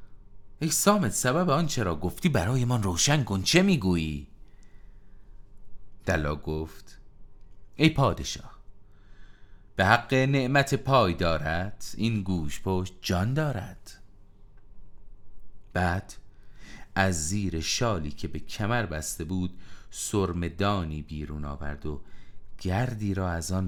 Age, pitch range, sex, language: 40-59, 90-105 Hz, male, Persian